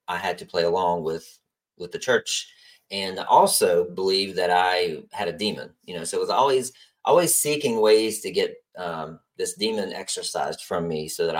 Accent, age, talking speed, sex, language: American, 30-49, 190 wpm, male, English